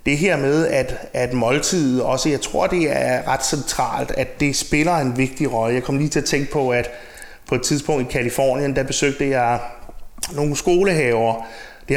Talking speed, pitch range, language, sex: 190 wpm, 125-155 Hz, Danish, male